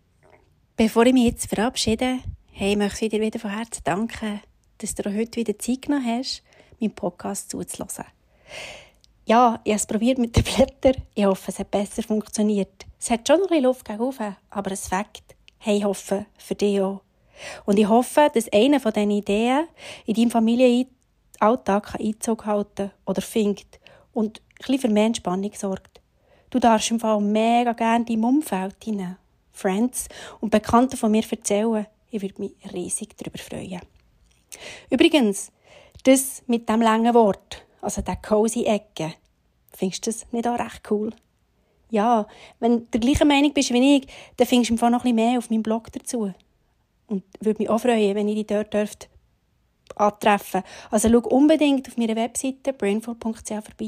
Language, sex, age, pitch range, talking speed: German, female, 30-49, 205-235 Hz, 170 wpm